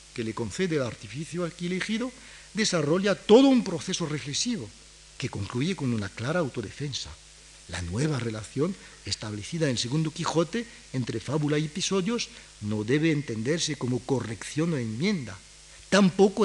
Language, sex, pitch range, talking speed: Spanish, male, 115-170 Hz, 140 wpm